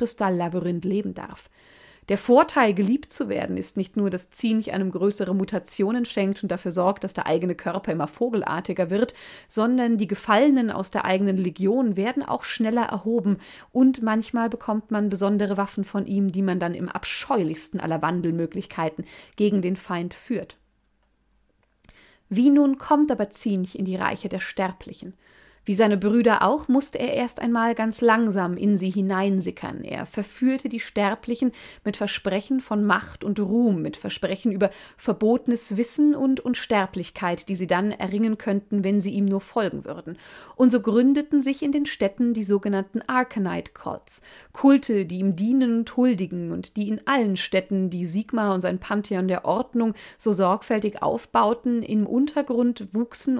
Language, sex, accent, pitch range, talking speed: German, female, German, 190-240 Hz, 160 wpm